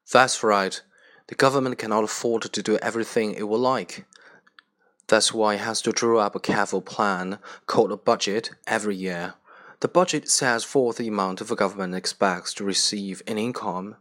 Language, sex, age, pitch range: Chinese, male, 30-49, 100-115 Hz